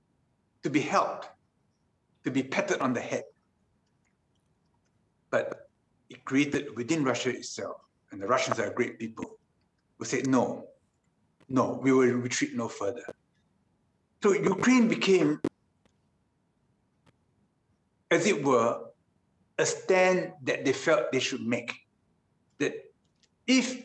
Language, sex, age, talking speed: Indonesian, male, 60-79, 115 wpm